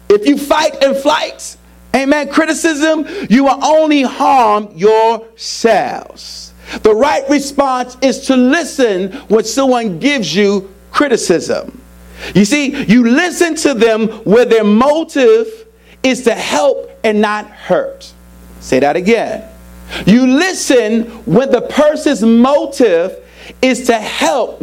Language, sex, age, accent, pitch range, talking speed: English, male, 50-69, American, 170-275 Hz, 120 wpm